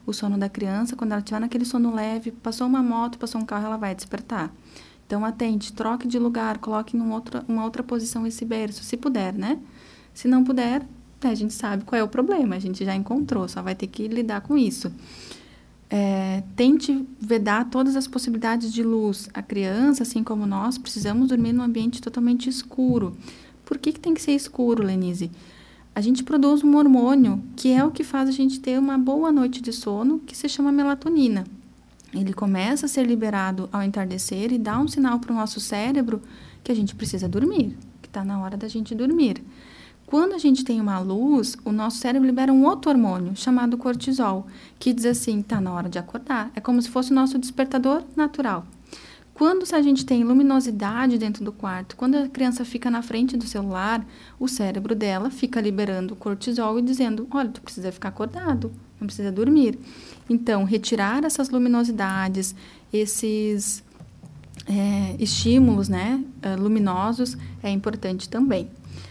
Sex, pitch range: female, 210-260 Hz